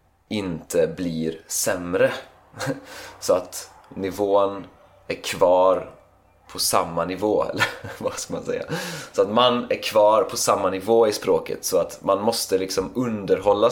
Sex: male